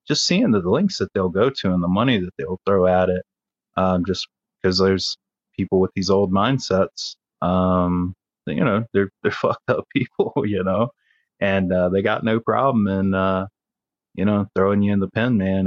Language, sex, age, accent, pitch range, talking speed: English, male, 30-49, American, 90-100 Hz, 195 wpm